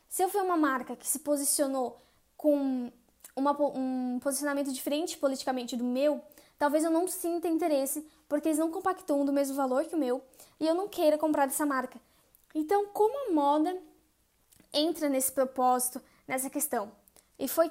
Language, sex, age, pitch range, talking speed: Portuguese, female, 10-29, 260-310 Hz, 165 wpm